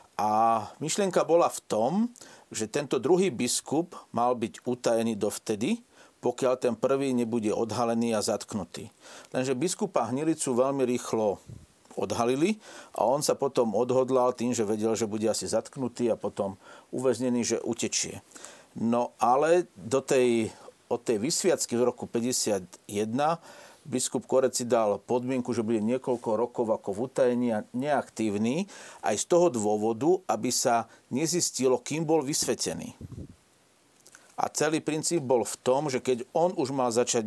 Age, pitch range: 50-69, 120-145 Hz